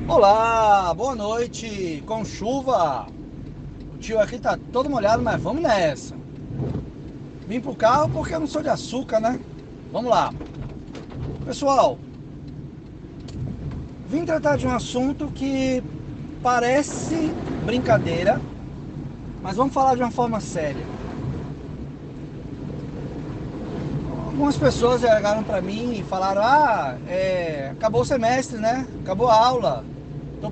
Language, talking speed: Portuguese, 115 wpm